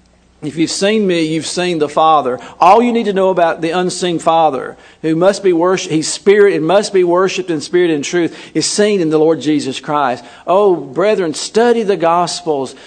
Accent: American